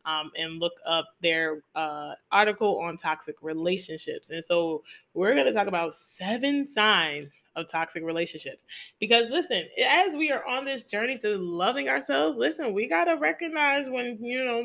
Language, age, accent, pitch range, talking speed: English, 20-39, American, 170-230 Hz, 165 wpm